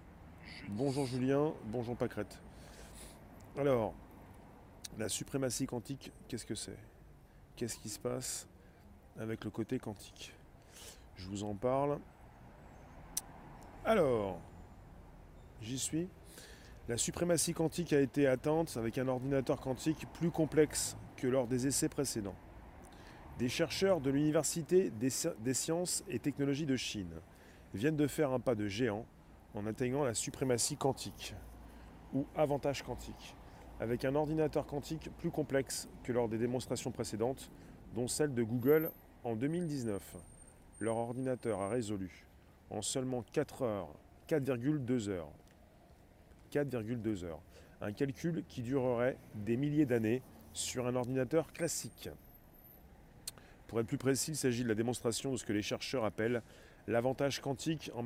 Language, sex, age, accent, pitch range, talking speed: French, male, 20-39, French, 105-140 Hz, 130 wpm